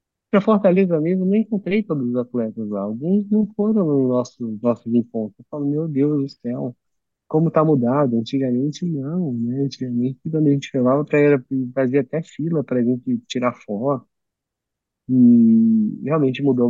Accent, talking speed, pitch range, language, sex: Brazilian, 160 wpm, 120-165 Hz, Portuguese, male